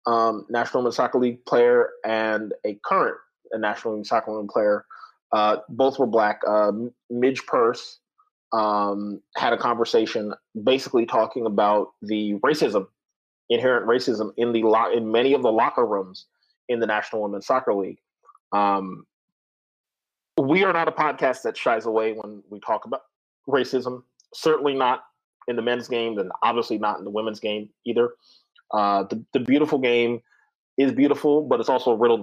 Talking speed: 165 wpm